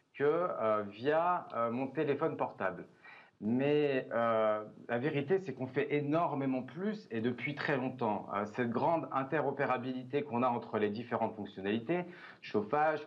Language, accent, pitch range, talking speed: French, French, 110-150 Hz, 140 wpm